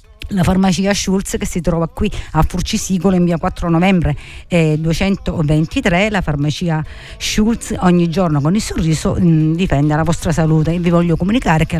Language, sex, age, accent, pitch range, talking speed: Italian, female, 50-69, native, 155-190 Hz, 160 wpm